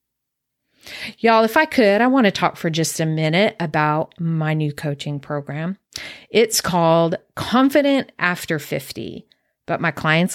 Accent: American